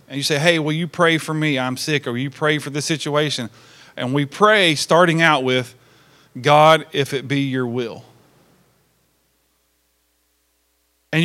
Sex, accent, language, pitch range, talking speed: male, American, English, 135-170 Hz, 165 wpm